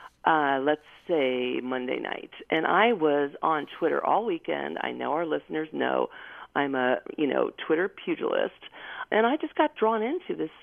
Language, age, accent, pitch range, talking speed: English, 40-59, American, 165-275 Hz, 170 wpm